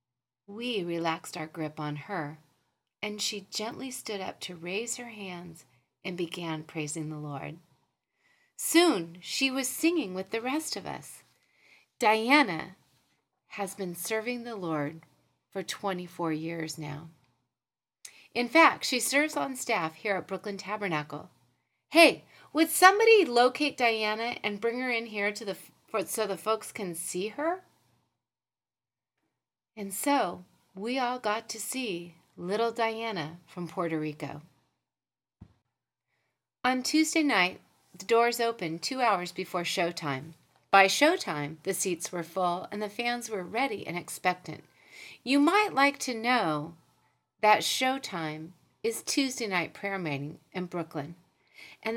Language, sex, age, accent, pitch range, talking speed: English, female, 30-49, American, 165-245 Hz, 135 wpm